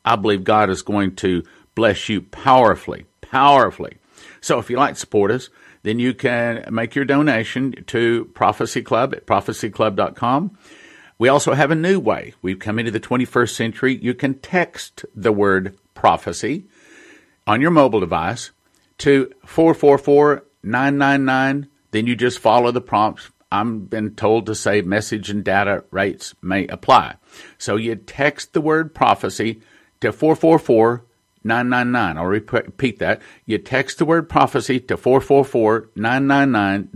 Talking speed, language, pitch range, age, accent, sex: 140 wpm, English, 105-135 Hz, 50-69, American, male